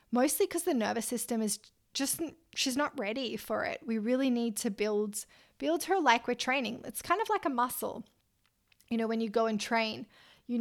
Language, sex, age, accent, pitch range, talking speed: English, female, 20-39, Australian, 215-250 Hz, 205 wpm